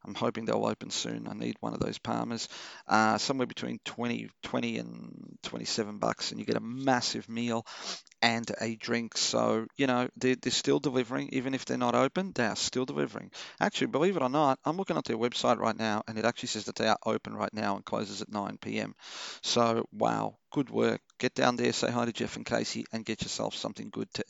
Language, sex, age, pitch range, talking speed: English, male, 40-59, 105-125 Hz, 220 wpm